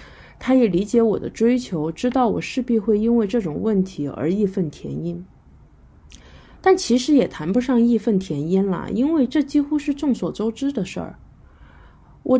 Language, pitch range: Chinese, 185-255 Hz